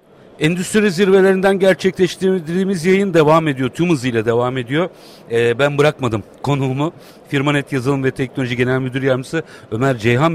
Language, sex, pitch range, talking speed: Turkish, male, 120-180 Hz, 135 wpm